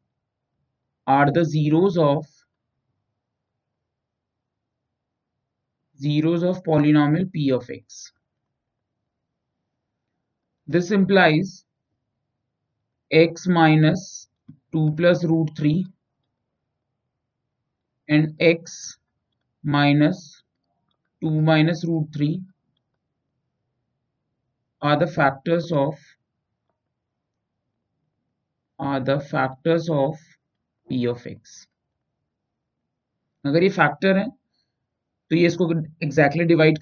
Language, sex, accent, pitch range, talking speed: English, male, Indian, 135-170 Hz, 75 wpm